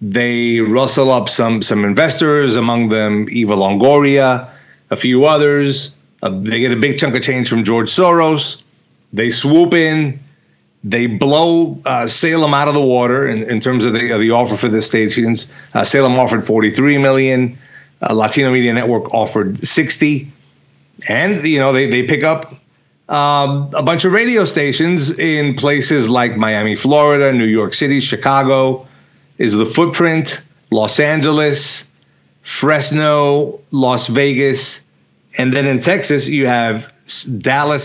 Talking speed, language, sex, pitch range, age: 150 wpm, English, male, 115-150 Hz, 30-49